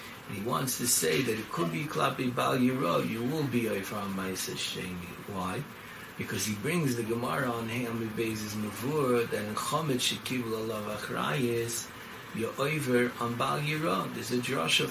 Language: English